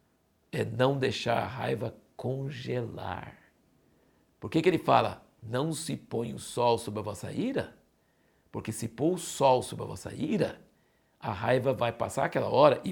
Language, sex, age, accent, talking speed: Portuguese, male, 60-79, Brazilian, 165 wpm